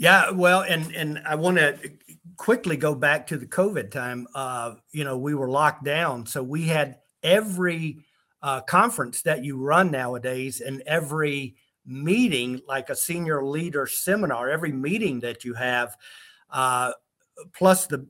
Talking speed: 155 wpm